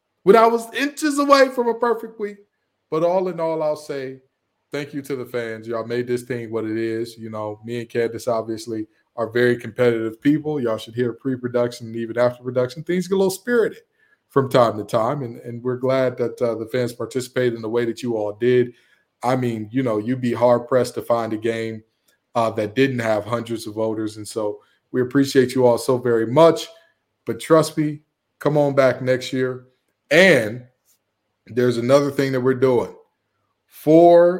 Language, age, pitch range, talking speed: English, 20-39, 115-150 Hz, 195 wpm